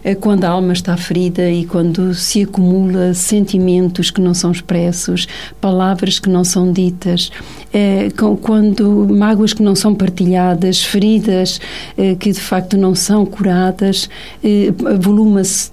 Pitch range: 180-210 Hz